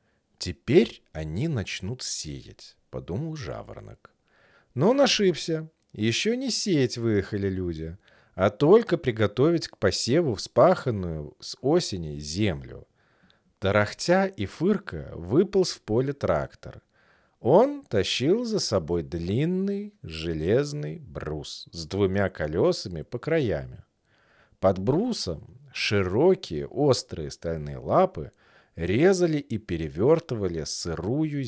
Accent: native